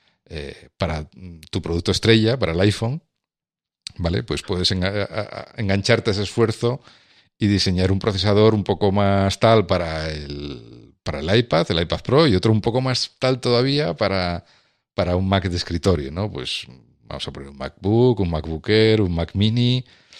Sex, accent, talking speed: male, Spanish, 165 wpm